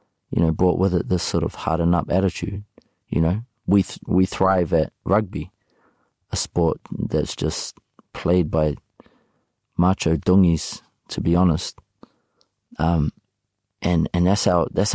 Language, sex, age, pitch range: English, male, 30-49, 85-100 Hz